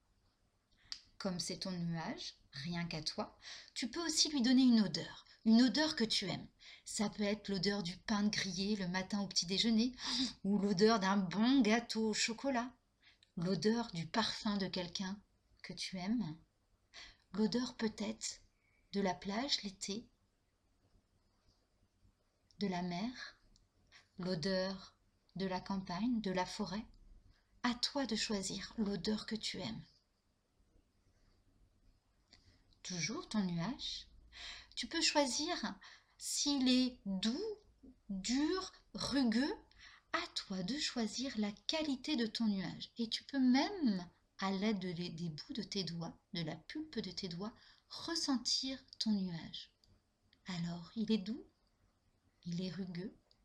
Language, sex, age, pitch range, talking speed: French, female, 40-59, 155-230 Hz, 135 wpm